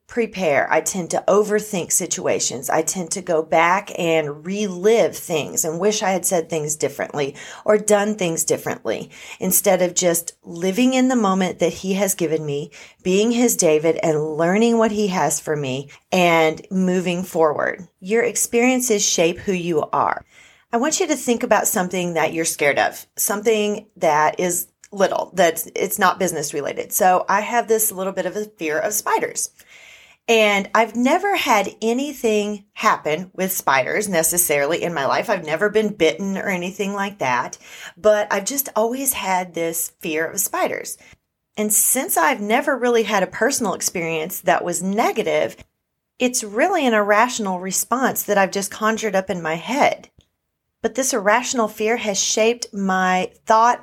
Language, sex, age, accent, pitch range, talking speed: English, female, 40-59, American, 175-220 Hz, 165 wpm